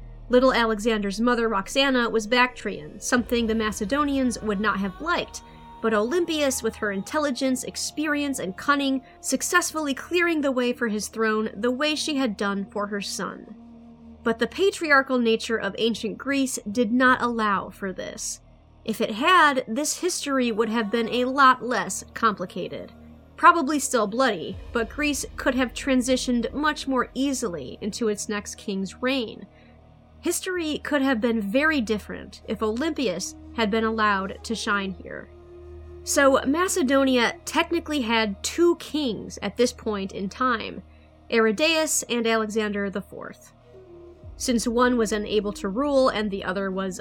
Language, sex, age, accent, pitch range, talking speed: English, female, 30-49, American, 210-275 Hz, 145 wpm